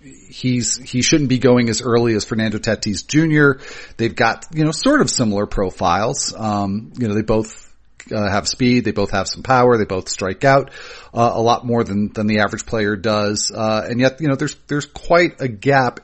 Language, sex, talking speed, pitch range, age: English, male, 210 wpm, 105-130 Hz, 40-59